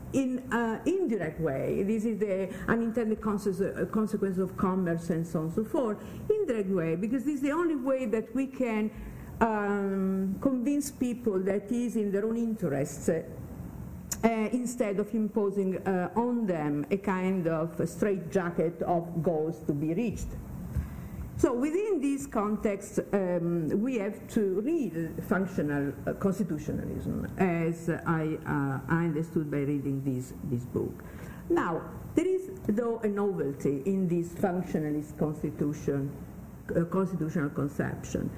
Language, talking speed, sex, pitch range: English, 145 wpm, female, 165-230 Hz